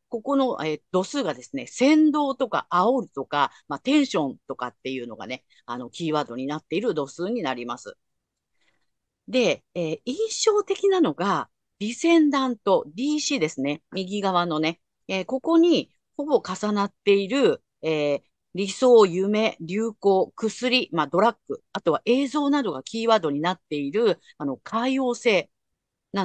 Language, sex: Japanese, female